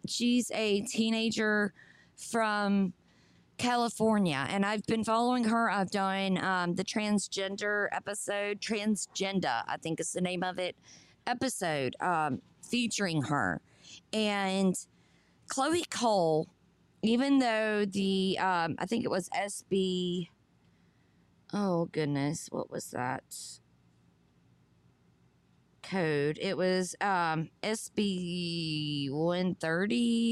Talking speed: 100 wpm